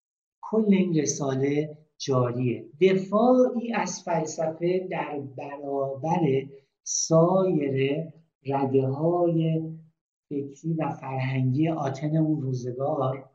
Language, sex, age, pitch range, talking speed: Persian, male, 60-79, 140-180 Hz, 75 wpm